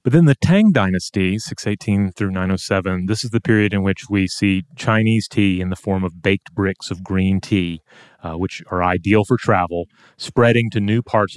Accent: American